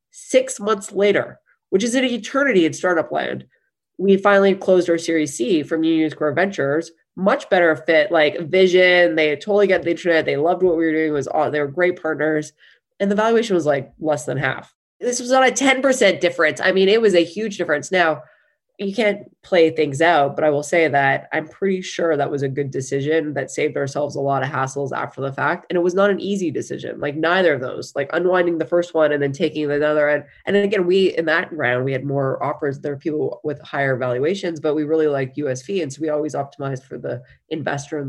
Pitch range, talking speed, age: 140-175 Hz, 230 wpm, 20-39